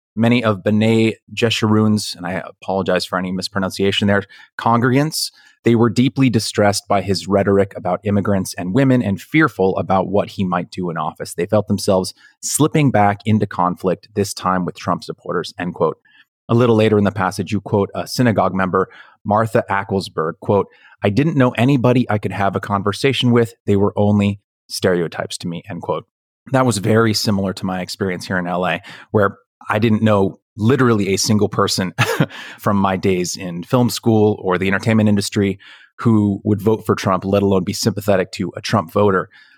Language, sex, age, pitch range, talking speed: English, male, 30-49, 95-115 Hz, 180 wpm